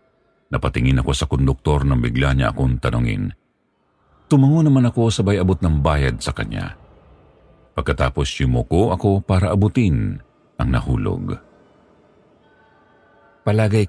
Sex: male